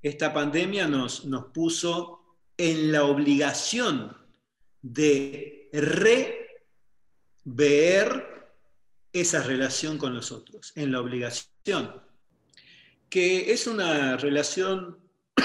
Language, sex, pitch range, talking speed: Spanish, male, 130-170 Hz, 80 wpm